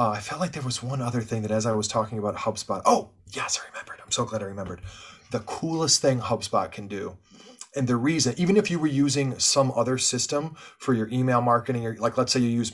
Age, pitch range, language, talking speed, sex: 30-49, 110-135 Hz, English, 245 wpm, male